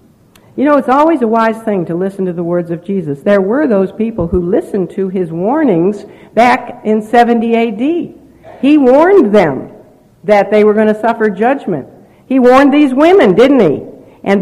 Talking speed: 185 wpm